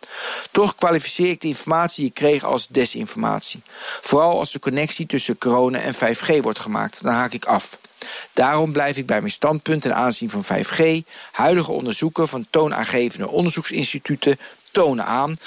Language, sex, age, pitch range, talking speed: Dutch, male, 50-69, 140-205 Hz, 160 wpm